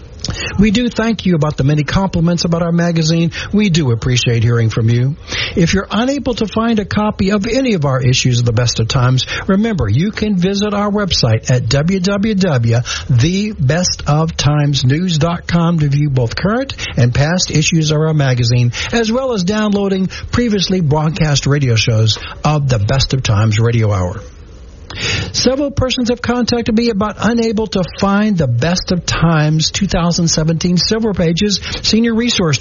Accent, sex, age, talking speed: American, male, 60-79, 155 wpm